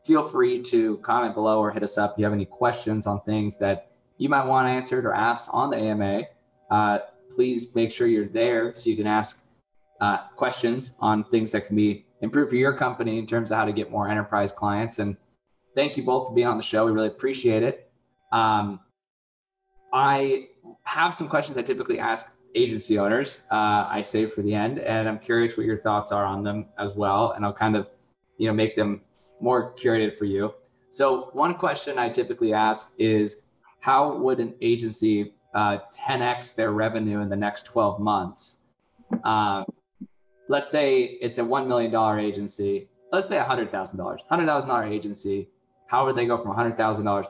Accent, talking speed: American, 200 wpm